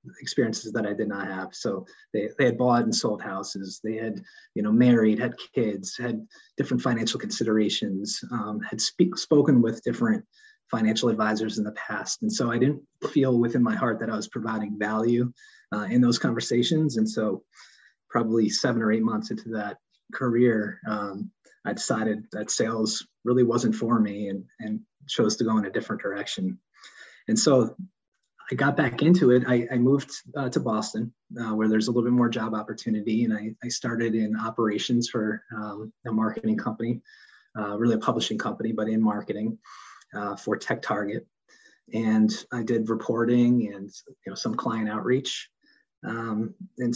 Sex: male